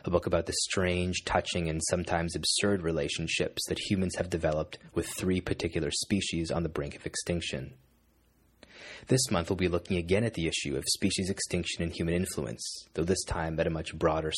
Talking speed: 190 wpm